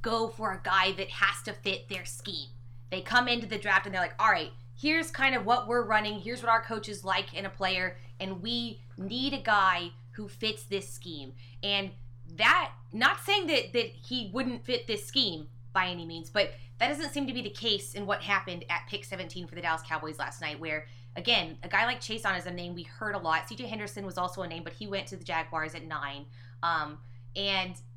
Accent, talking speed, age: American, 230 wpm, 20-39